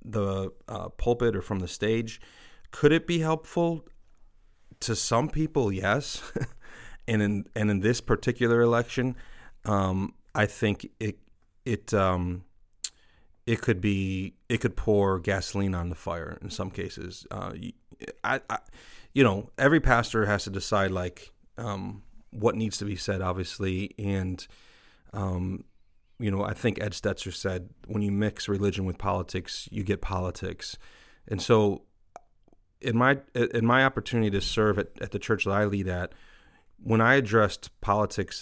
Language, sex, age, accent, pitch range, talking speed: English, male, 40-59, American, 95-115 Hz, 155 wpm